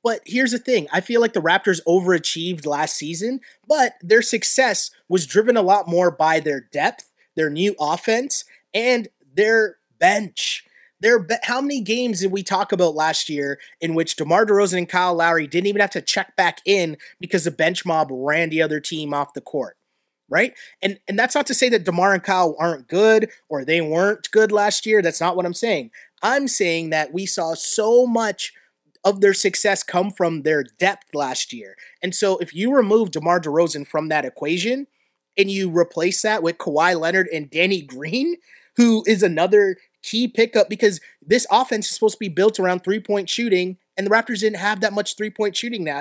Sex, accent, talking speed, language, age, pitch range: male, American, 195 wpm, English, 30-49, 170-230 Hz